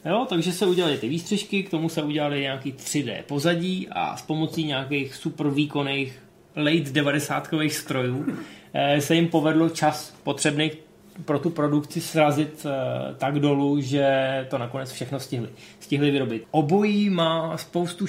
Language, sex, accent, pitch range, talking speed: Czech, male, native, 140-160 Hz, 145 wpm